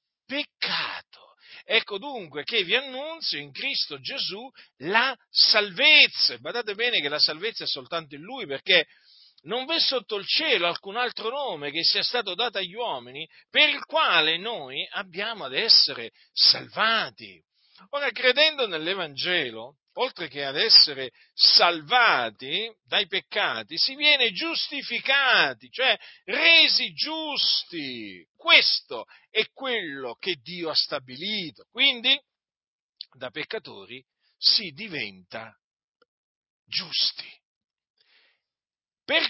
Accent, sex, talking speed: native, male, 110 wpm